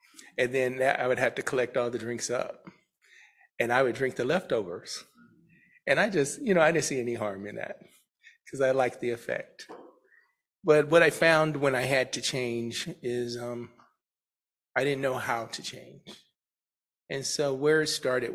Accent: American